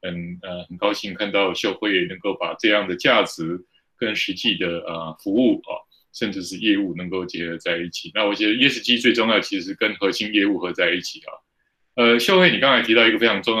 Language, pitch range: Chinese, 90-125 Hz